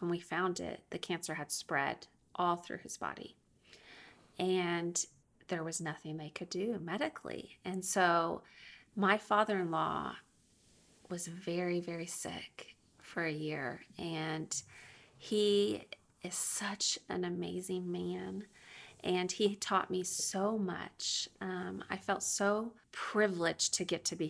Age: 30-49